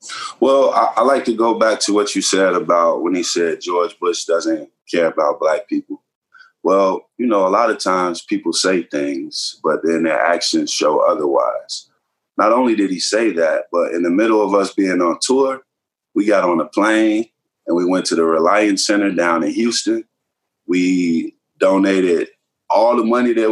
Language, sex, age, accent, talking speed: English, male, 30-49, American, 190 wpm